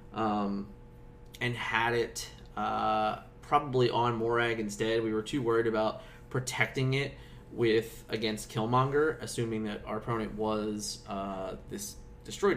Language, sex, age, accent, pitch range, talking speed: English, male, 20-39, American, 110-125 Hz, 130 wpm